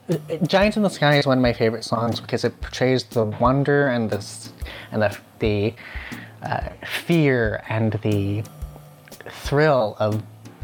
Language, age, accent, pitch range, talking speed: English, 20-39, American, 105-125 Hz, 145 wpm